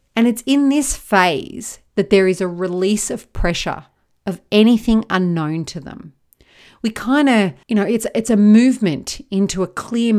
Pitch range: 175-220 Hz